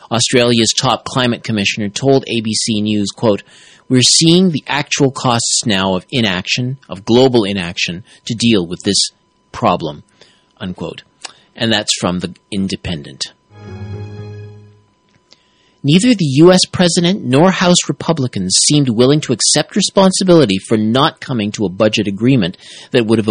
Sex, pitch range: male, 105-155 Hz